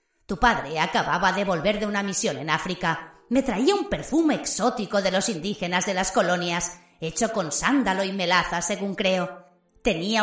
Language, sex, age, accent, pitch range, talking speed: Spanish, female, 30-49, Spanish, 175-240 Hz, 170 wpm